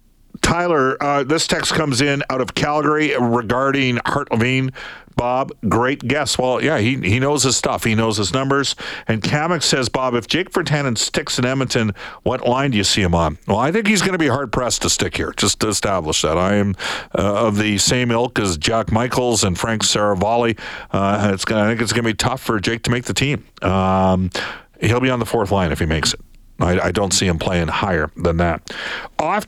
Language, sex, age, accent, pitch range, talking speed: English, male, 50-69, American, 100-130 Hz, 215 wpm